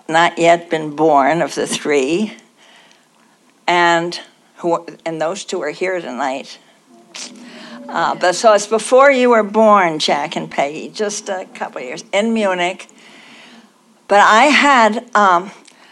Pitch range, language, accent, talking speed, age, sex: 175-220 Hz, English, American, 135 wpm, 60-79, female